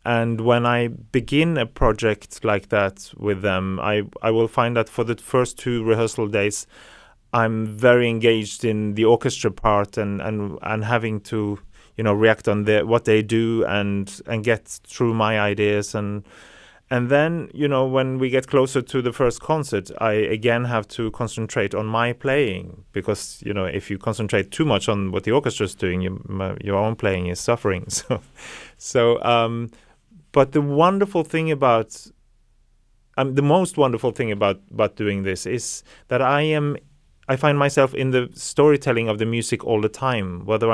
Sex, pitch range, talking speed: male, 105-125 Hz, 180 wpm